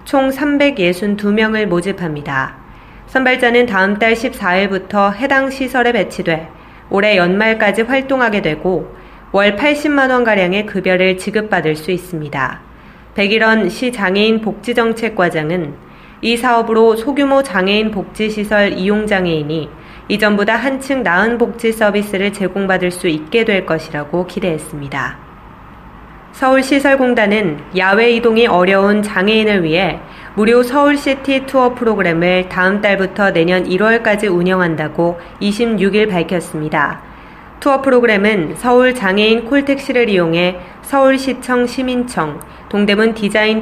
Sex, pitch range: female, 180-235 Hz